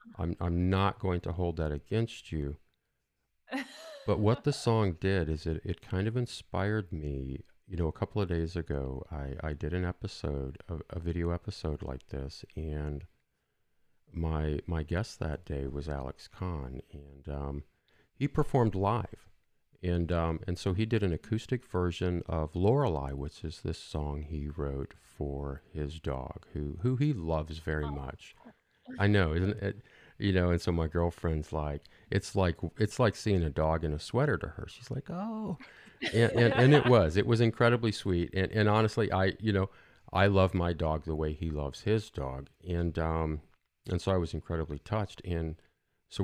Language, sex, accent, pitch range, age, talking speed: English, male, American, 75-100 Hz, 50-69, 180 wpm